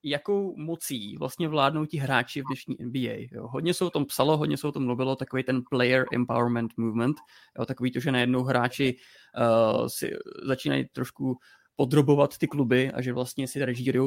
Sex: male